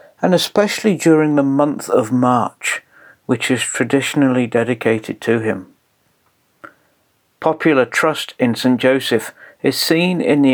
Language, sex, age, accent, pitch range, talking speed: English, male, 50-69, British, 120-150 Hz, 125 wpm